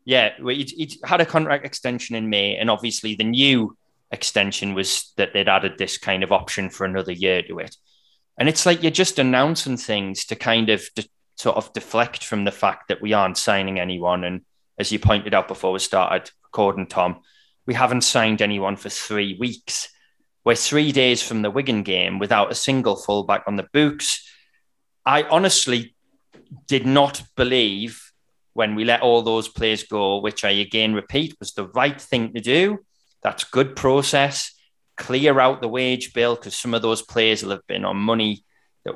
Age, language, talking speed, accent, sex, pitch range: 20-39, English, 185 wpm, British, male, 100-135 Hz